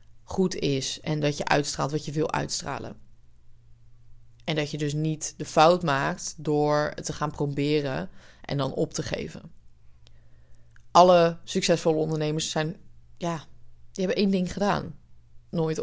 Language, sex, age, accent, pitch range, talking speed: Dutch, female, 20-39, Dutch, 140-165 Hz, 150 wpm